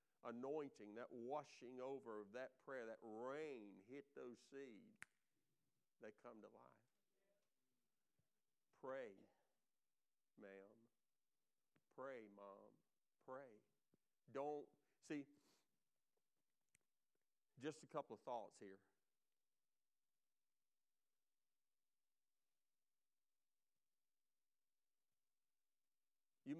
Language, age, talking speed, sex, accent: English, 50-69, 70 wpm, male, American